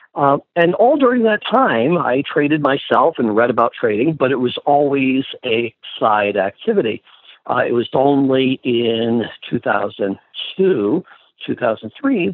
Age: 50-69